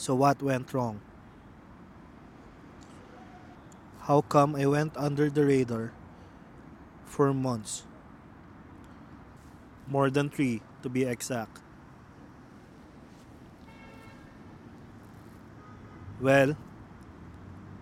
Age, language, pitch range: 20-39, English, 105-145 Hz